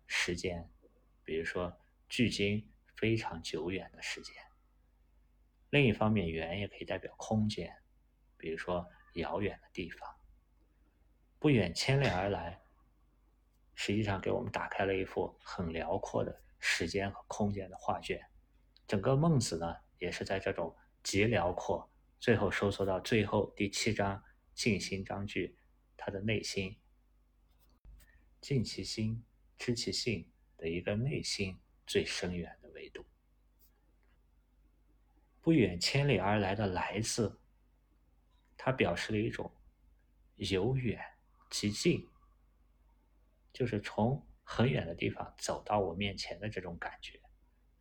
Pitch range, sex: 80-105 Hz, male